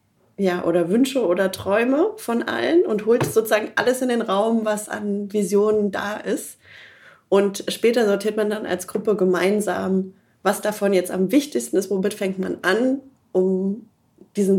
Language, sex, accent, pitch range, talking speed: German, female, German, 180-215 Hz, 160 wpm